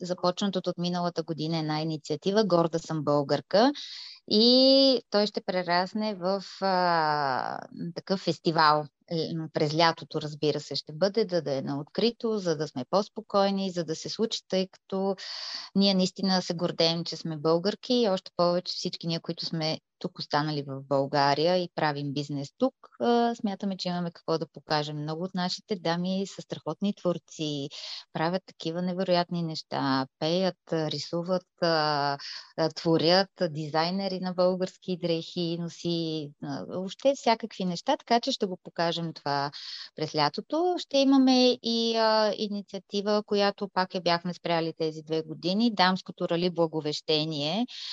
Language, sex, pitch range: Bulgarian, female, 160-200 Hz